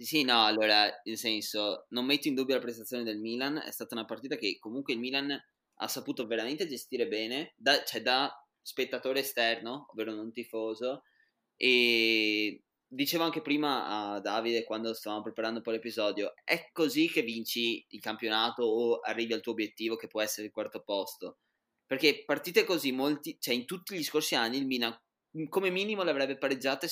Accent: native